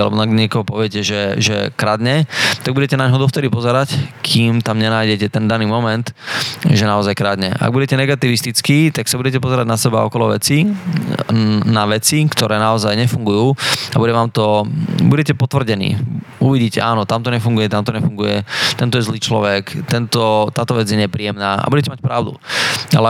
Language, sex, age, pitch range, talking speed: Slovak, male, 20-39, 105-130 Hz, 160 wpm